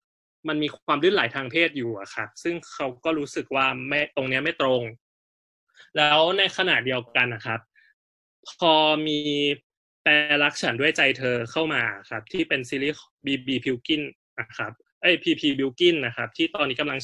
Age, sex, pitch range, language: 20-39, male, 125-160 Hz, Thai